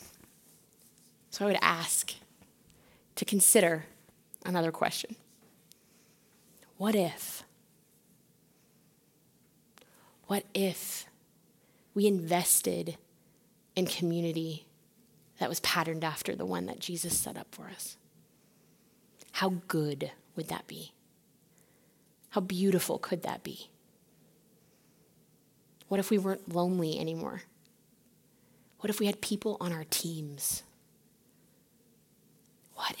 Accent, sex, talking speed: American, female, 95 wpm